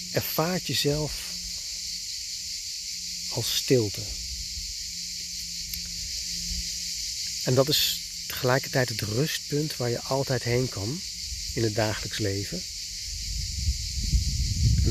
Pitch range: 85-125 Hz